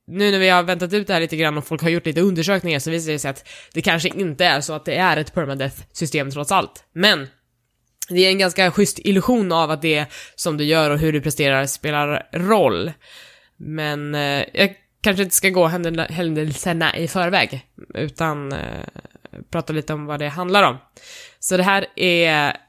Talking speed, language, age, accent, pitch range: 200 wpm, Swedish, 20-39, native, 150-185 Hz